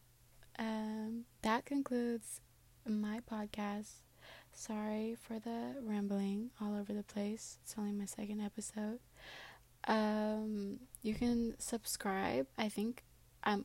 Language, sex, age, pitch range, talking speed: English, female, 20-39, 205-220 Hz, 110 wpm